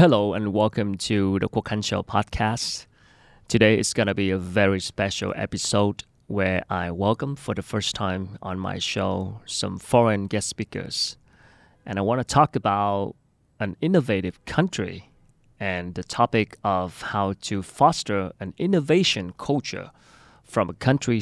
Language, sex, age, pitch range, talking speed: Vietnamese, male, 30-49, 95-120 Hz, 150 wpm